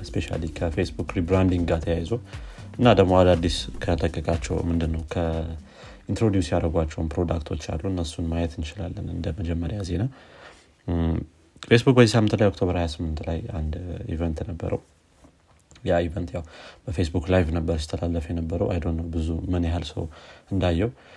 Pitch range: 85-95 Hz